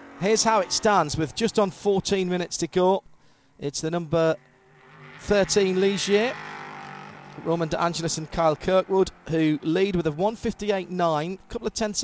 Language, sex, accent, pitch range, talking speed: English, male, British, 165-225 Hz, 155 wpm